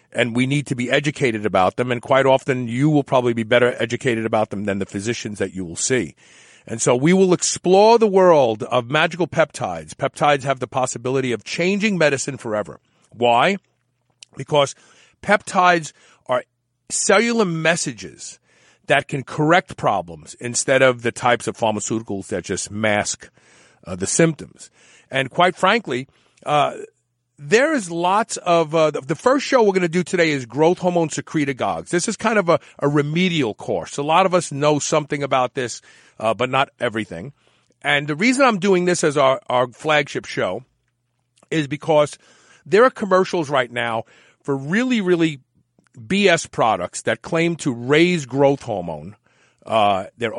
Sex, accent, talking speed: male, American, 165 wpm